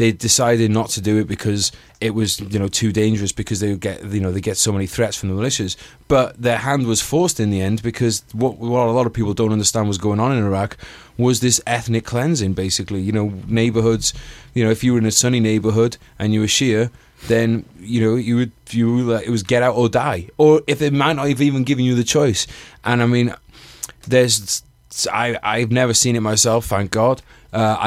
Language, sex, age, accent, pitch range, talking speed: English, male, 20-39, British, 105-125 Hz, 230 wpm